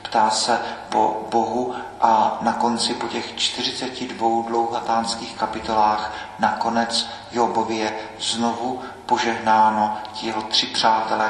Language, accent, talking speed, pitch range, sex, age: Czech, native, 105 wpm, 110-115 Hz, male, 40-59